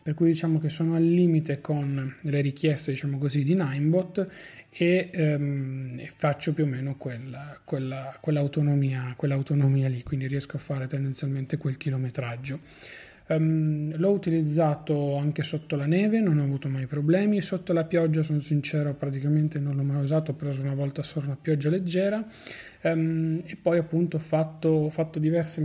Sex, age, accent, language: male, 30-49, native, Italian